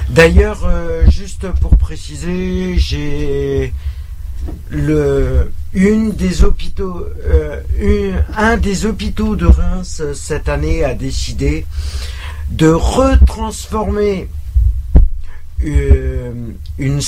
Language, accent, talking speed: French, French, 65 wpm